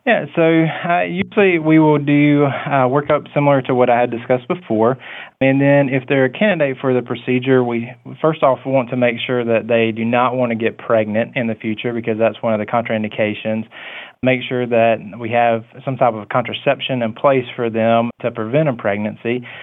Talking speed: 200 wpm